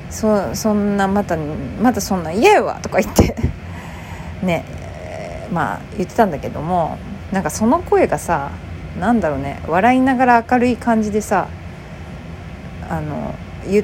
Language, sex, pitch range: Japanese, female, 135-220 Hz